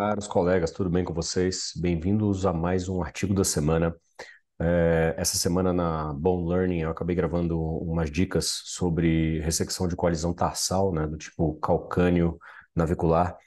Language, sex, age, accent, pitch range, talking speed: Portuguese, male, 40-59, Brazilian, 85-100 Hz, 150 wpm